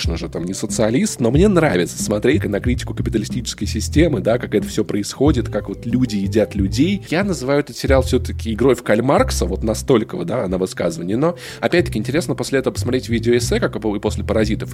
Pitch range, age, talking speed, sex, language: 105-150 Hz, 20-39, 185 wpm, male, Russian